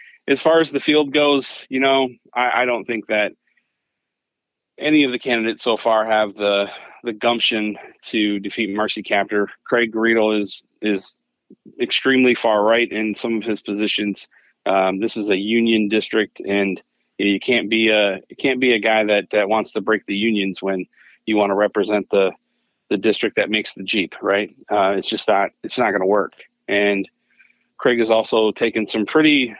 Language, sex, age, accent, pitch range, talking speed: English, male, 30-49, American, 105-120 Hz, 185 wpm